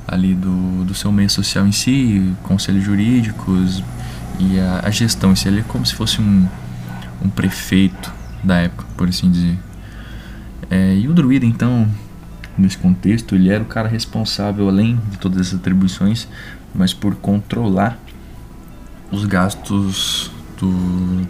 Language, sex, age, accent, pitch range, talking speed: Portuguese, male, 20-39, Brazilian, 90-105 Hz, 145 wpm